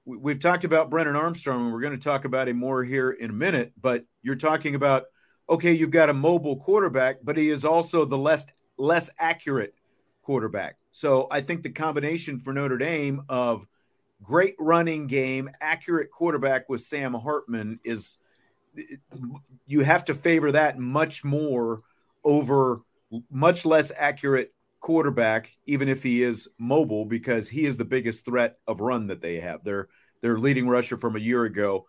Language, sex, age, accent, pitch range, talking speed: English, male, 40-59, American, 115-150 Hz, 170 wpm